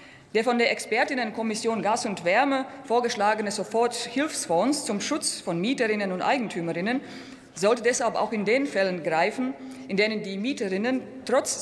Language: German